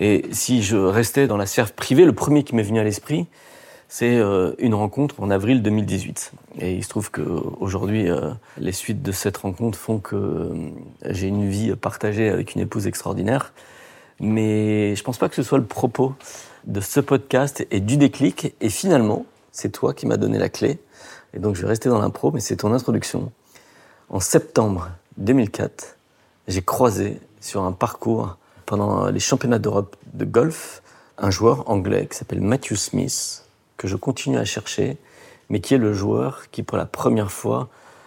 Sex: male